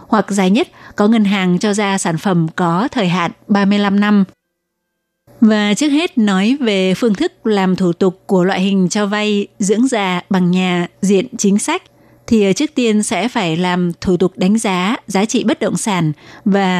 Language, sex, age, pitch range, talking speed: Vietnamese, female, 20-39, 180-220 Hz, 190 wpm